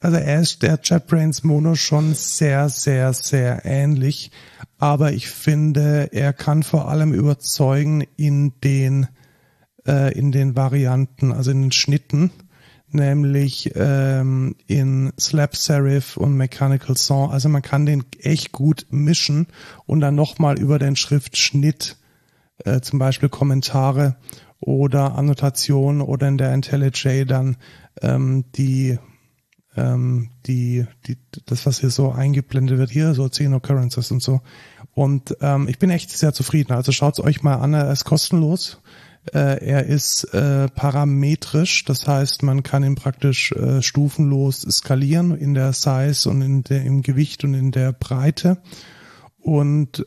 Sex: male